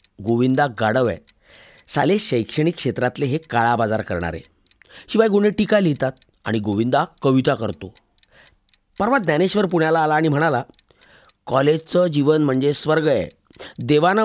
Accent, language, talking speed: native, Marathi, 100 wpm